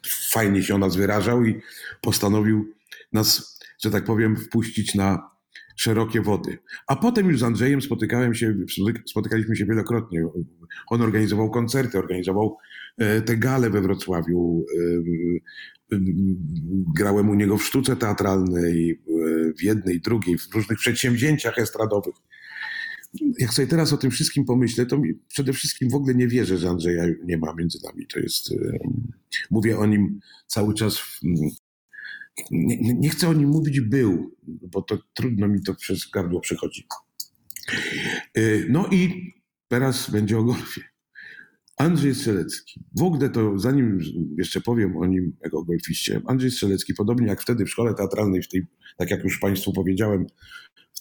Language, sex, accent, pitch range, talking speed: Polish, male, native, 95-125 Hz, 145 wpm